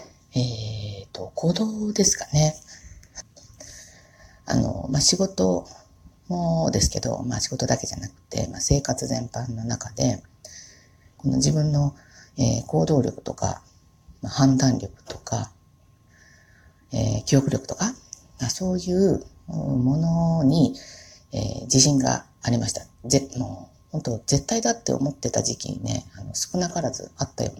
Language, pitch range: Japanese, 105-155 Hz